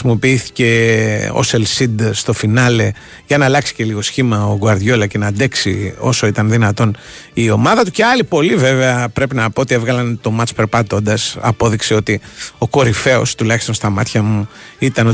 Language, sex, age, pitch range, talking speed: Greek, male, 30-49, 110-130 Hz, 175 wpm